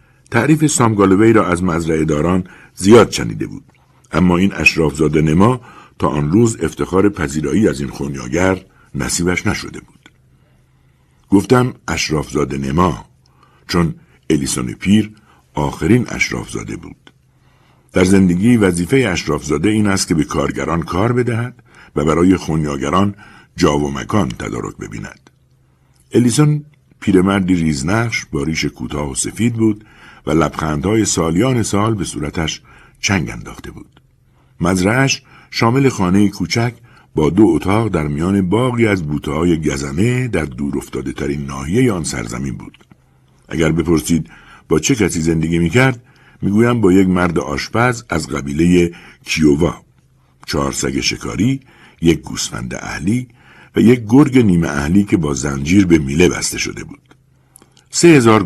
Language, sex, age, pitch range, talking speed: Persian, male, 60-79, 80-115 Hz, 130 wpm